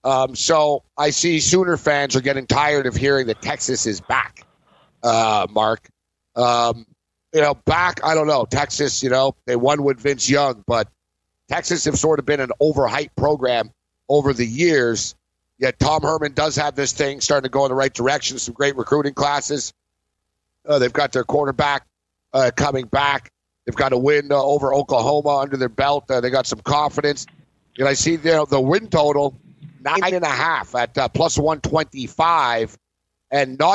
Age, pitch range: 50-69, 120-150 Hz